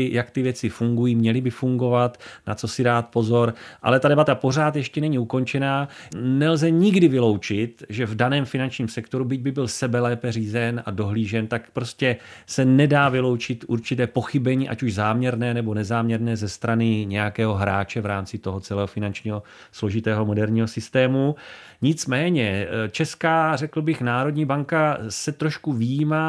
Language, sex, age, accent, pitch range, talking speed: Czech, male, 30-49, native, 105-135 Hz, 155 wpm